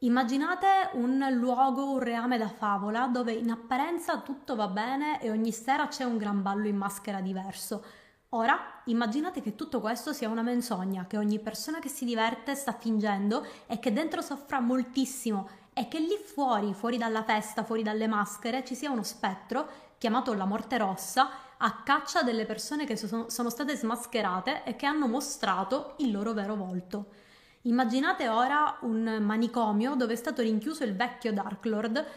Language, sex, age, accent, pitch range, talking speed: Italian, female, 20-39, native, 215-265 Hz, 170 wpm